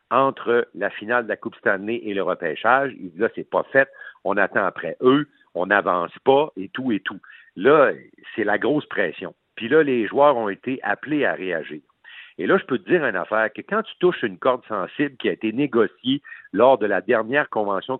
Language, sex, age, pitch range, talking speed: French, male, 50-69, 110-140 Hz, 220 wpm